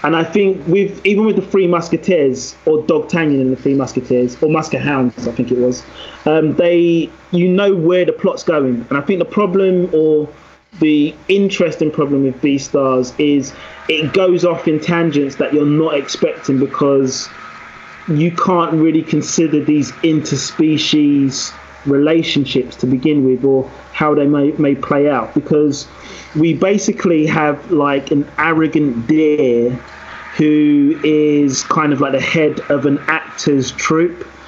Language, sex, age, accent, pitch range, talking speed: English, male, 30-49, British, 135-160 Hz, 155 wpm